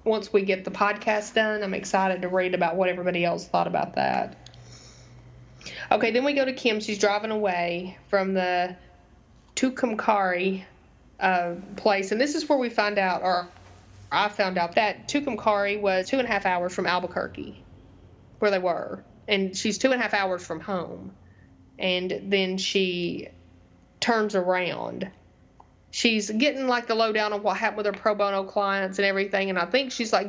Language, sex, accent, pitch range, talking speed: English, female, American, 180-215 Hz, 175 wpm